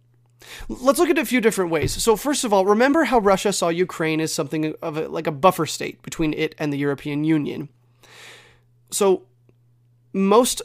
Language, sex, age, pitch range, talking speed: English, male, 30-49, 140-185 Hz, 185 wpm